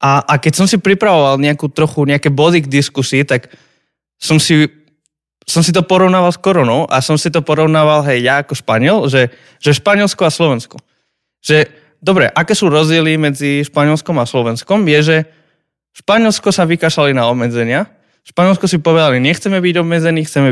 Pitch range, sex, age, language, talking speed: 130-165 Hz, male, 20-39, Slovak, 170 wpm